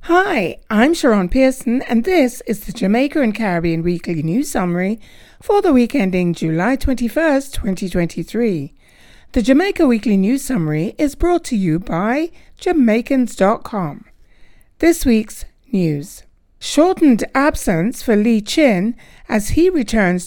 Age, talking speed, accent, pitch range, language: 60-79, 125 wpm, British, 185-275 Hz, English